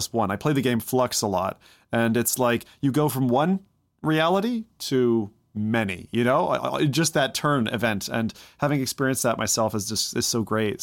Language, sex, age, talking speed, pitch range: English, male, 30-49, 190 wpm, 110-130 Hz